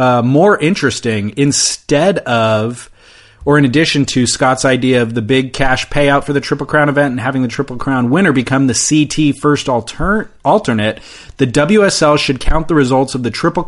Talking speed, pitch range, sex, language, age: 180 wpm, 120-150 Hz, male, English, 30-49